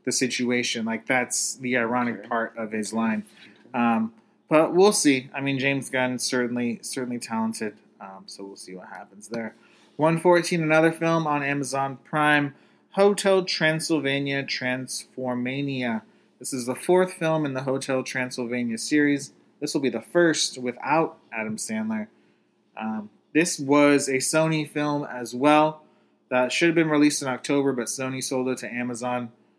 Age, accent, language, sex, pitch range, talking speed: 20-39, American, English, male, 115-145 Hz, 155 wpm